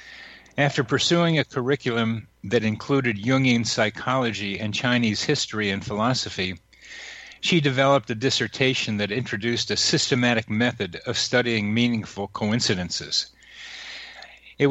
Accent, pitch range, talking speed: American, 105-135 Hz, 110 wpm